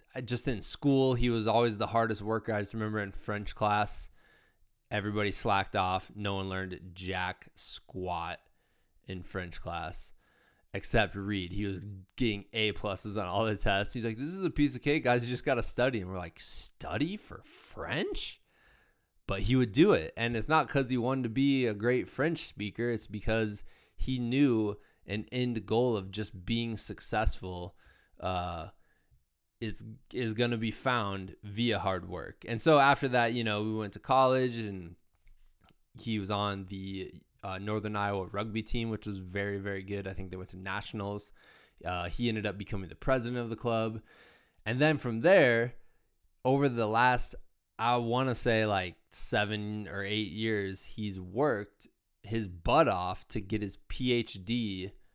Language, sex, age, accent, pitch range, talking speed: English, male, 20-39, American, 95-120 Hz, 175 wpm